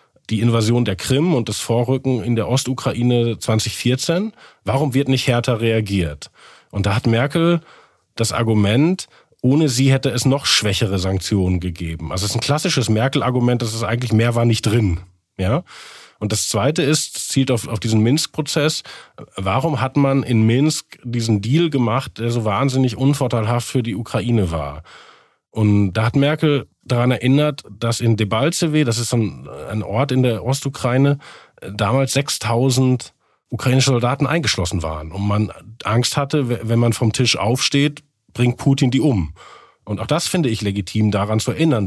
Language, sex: German, male